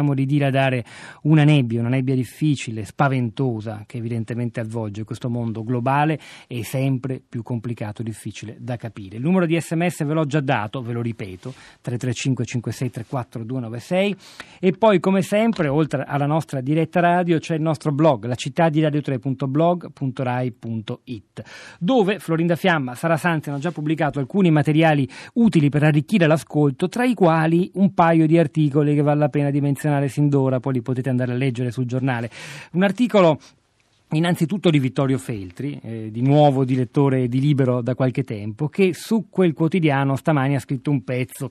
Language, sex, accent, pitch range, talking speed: Italian, male, native, 125-165 Hz, 160 wpm